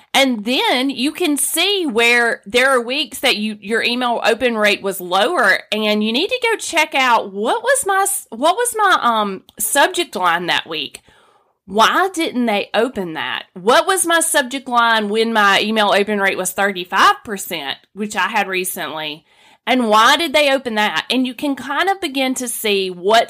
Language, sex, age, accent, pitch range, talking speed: English, female, 30-49, American, 195-275 Hz, 185 wpm